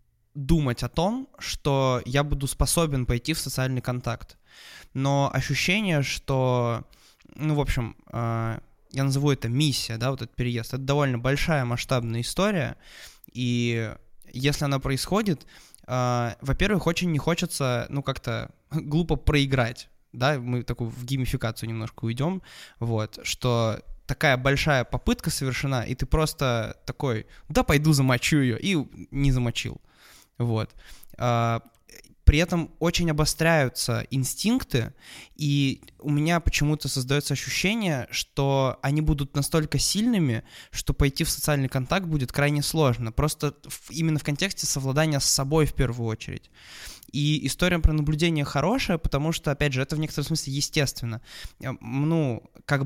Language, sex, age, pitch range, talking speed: Russian, male, 20-39, 125-155 Hz, 135 wpm